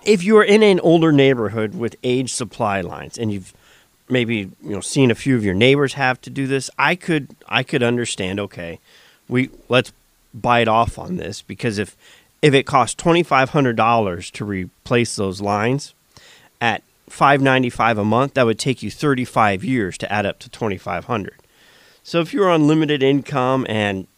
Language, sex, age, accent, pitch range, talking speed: English, male, 40-59, American, 110-140 Hz, 185 wpm